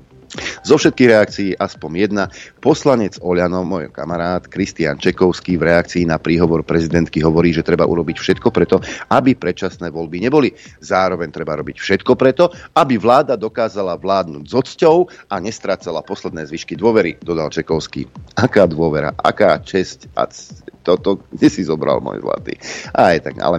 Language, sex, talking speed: Slovak, male, 150 wpm